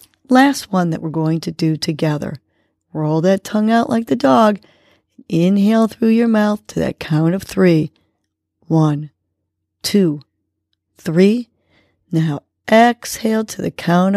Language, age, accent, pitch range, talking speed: English, 40-59, American, 150-195 Hz, 135 wpm